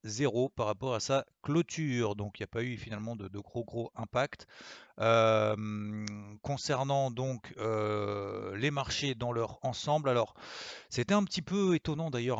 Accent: French